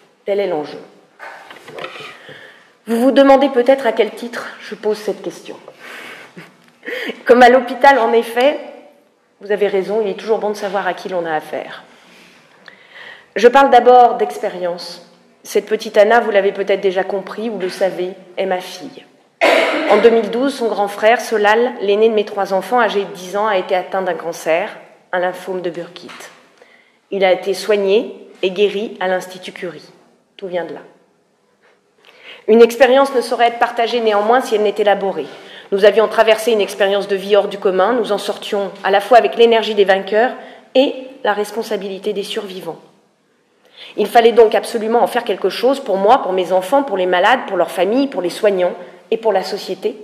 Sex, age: female, 30-49